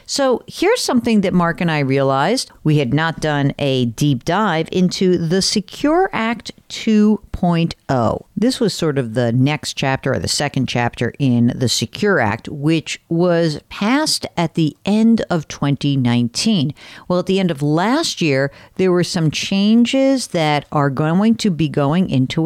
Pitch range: 130-190 Hz